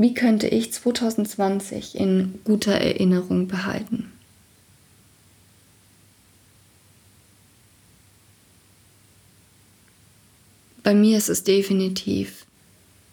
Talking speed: 60 wpm